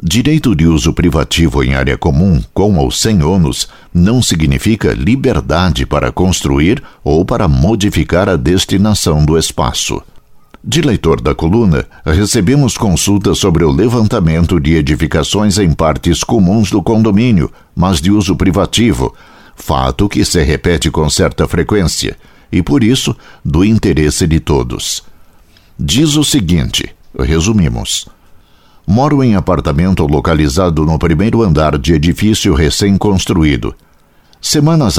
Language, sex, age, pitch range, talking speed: Portuguese, male, 60-79, 80-100 Hz, 125 wpm